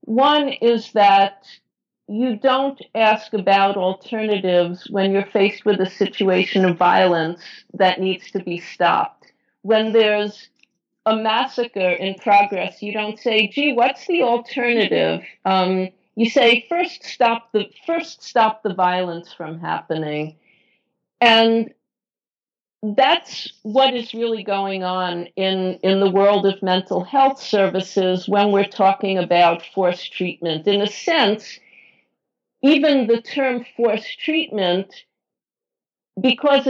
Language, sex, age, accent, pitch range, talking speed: English, female, 50-69, American, 185-240 Hz, 125 wpm